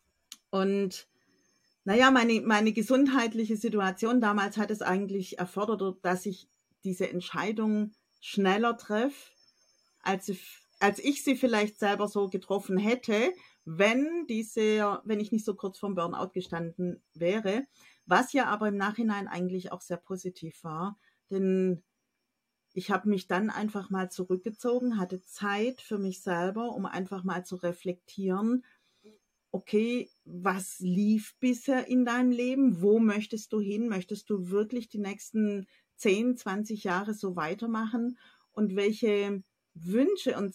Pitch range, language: 190-230 Hz, German